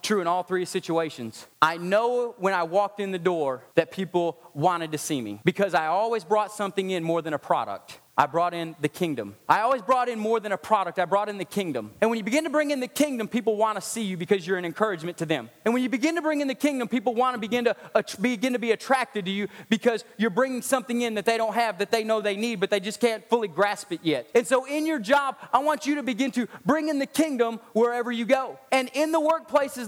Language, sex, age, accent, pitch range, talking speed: English, male, 30-49, American, 185-245 Hz, 265 wpm